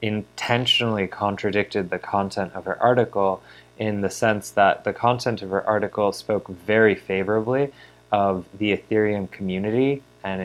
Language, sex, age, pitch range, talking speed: English, male, 20-39, 90-105 Hz, 140 wpm